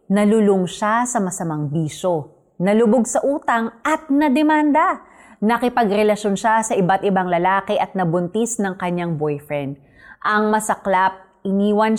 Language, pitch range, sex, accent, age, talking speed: Filipino, 175-230 Hz, female, native, 30-49, 120 wpm